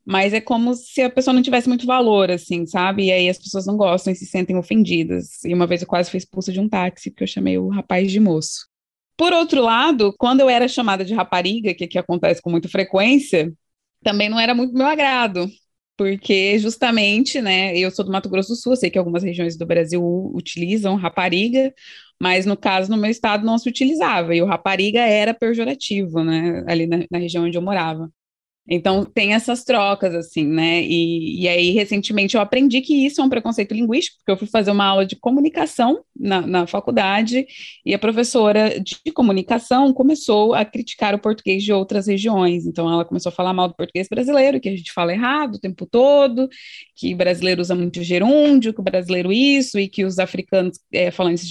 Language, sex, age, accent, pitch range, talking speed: Portuguese, female, 20-39, Brazilian, 180-240 Hz, 205 wpm